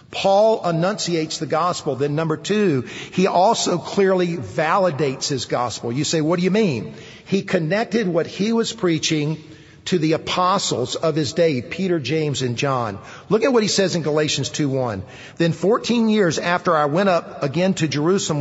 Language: English